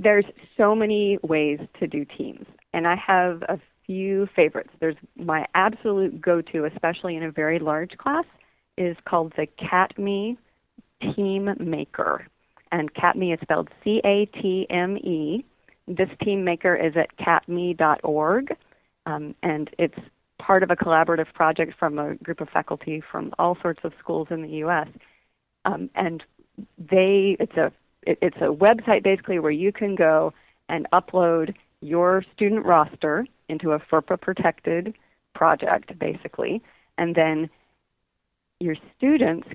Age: 40-59